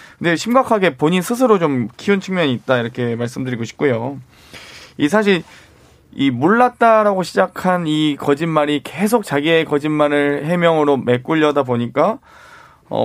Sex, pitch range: male, 130-180 Hz